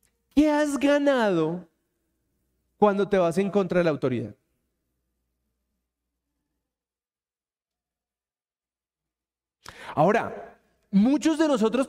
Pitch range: 180-270 Hz